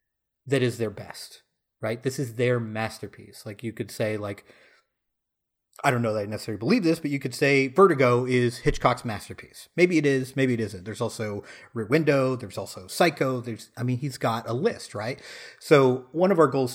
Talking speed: 200 wpm